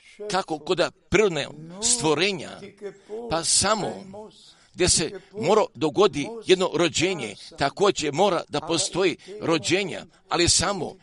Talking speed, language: 105 wpm, Croatian